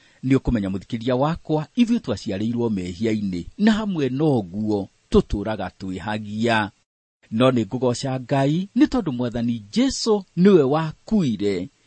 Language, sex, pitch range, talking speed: English, male, 105-155 Hz, 115 wpm